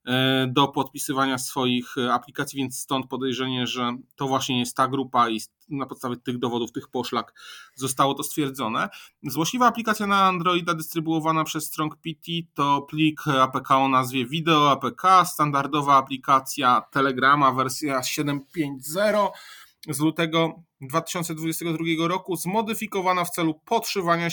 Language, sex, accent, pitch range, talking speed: Polish, male, native, 135-160 Hz, 125 wpm